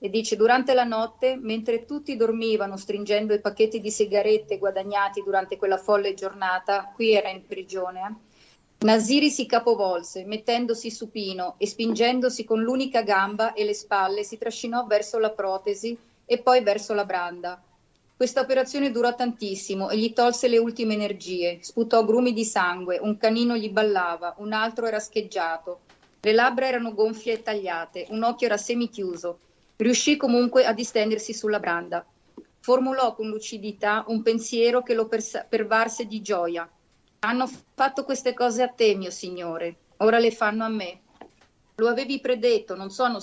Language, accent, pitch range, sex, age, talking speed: Italian, native, 195-235 Hz, female, 30-49, 155 wpm